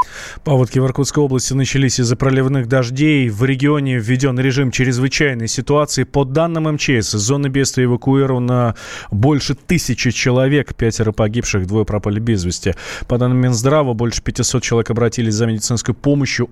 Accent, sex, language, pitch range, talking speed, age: native, male, Russian, 115-140 Hz, 145 wpm, 20-39